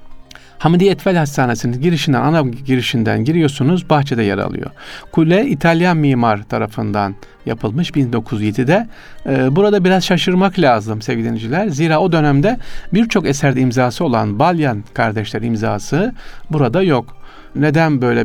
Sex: male